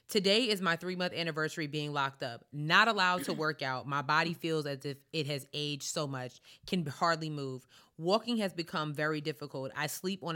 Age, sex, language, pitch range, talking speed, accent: 20-39, female, English, 145-175 Hz, 195 wpm, American